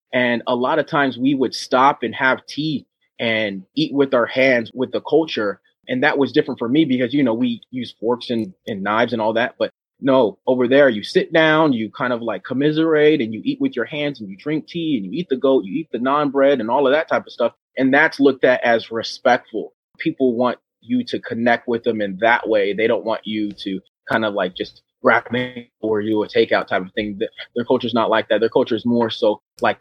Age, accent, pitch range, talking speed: 30-49, American, 110-130 Hz, 245 wpm